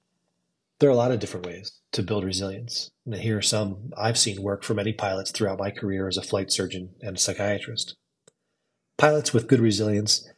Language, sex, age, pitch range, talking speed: English, male, 30-49, 95-120 Hz, 195 wpm